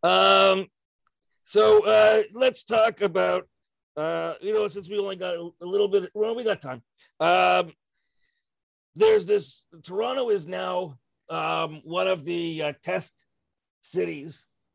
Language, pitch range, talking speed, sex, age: English, 145-200 Hz, 135 wpm, male, 40-59